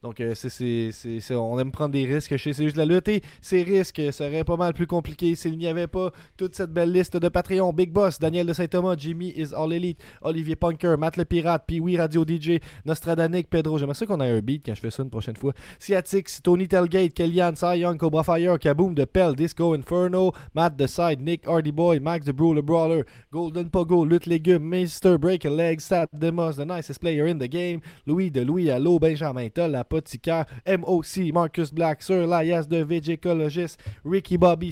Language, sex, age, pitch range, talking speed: French, male, 20-39, 145-175 Hz, 210 wpm